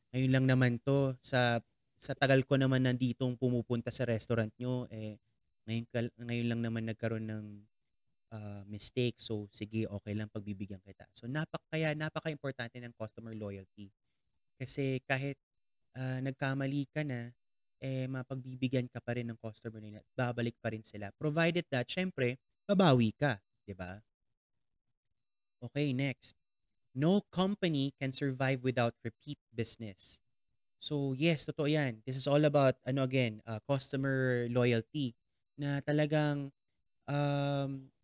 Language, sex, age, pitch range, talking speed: English, male, 20-39, 115-140 Hz, 140 wpm